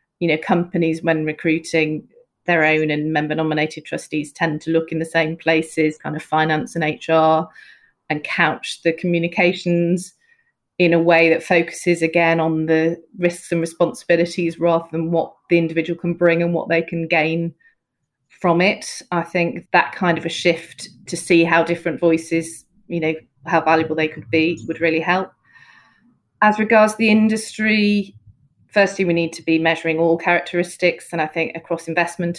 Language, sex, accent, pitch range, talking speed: English, female, British, 160-175 Hz, 165 wpm